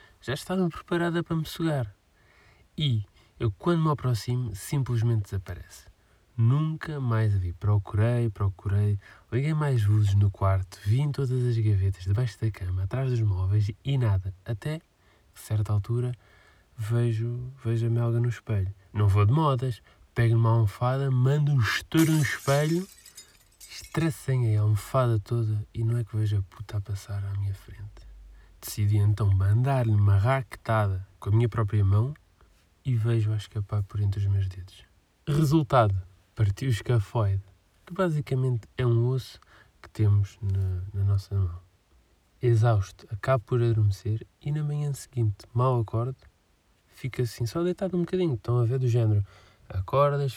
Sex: male